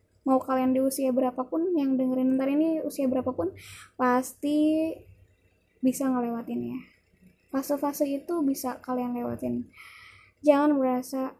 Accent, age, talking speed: native, 20-39, 115 wpm